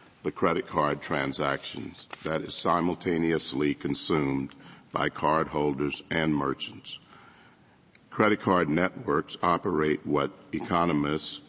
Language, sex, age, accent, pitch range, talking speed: English, male, 60-79, American, 75-85 Hz, 95 wpm